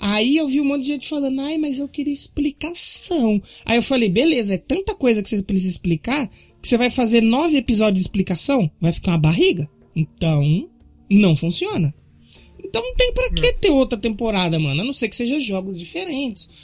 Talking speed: 200 wpm